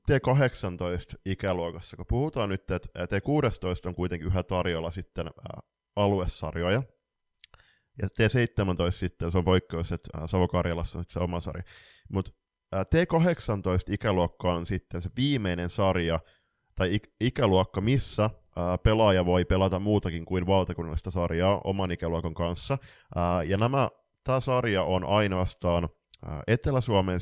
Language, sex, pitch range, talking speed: Finnish, male, 85-105 Hz, 115 wpm